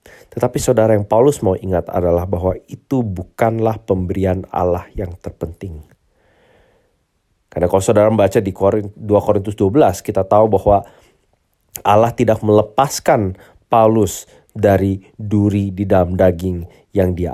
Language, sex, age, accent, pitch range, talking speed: Indonesian, male, 30-49, native, 90-110 Hz, 125 wpm